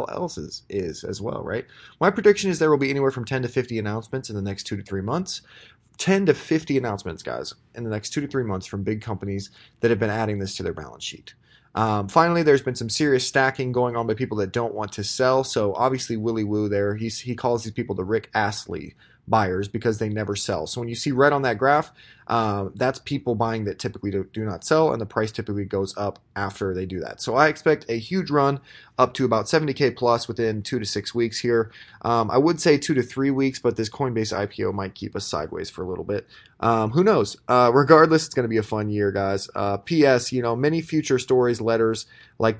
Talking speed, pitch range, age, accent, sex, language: 240 wpm, 105-135 Hz, 20-39, American, male, English